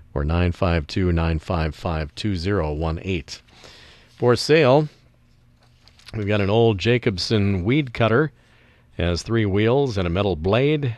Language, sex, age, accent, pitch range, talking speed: English, male, 50-69, American, 90-120 Hz, 100 wpm